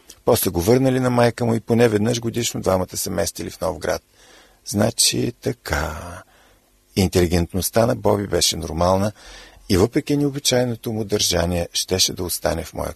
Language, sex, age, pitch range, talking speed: Bulgarian, male, 50-69, 90-125 Hz, 155 wpm